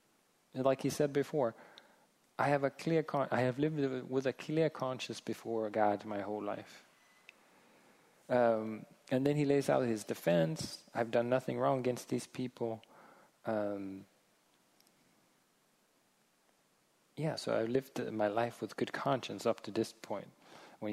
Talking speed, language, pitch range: 150 wpm, English, 115-145 Hz